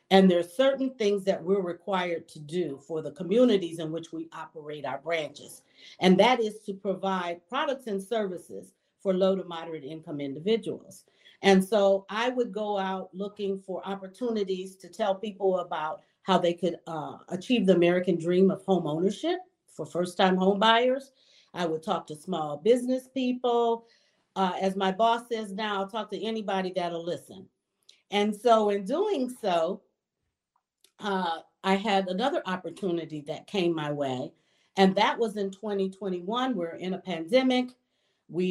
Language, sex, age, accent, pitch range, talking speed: English, female, 40-59, American, 170-220 Hz, 160 wpm